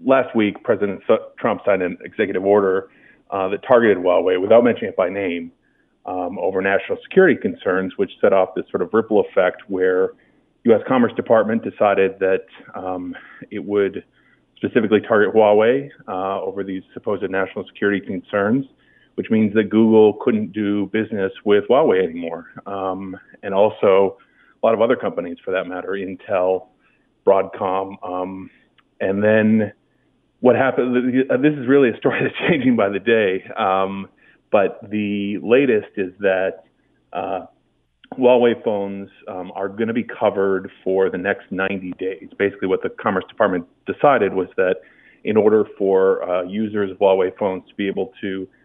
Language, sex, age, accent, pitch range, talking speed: English, male, 40-59, American, 95-120 Hz, 155 wpm